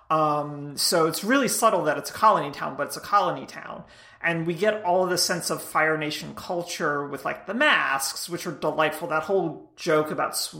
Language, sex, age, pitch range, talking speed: English, male, 30-49, 155-200 Hz, 210 wpm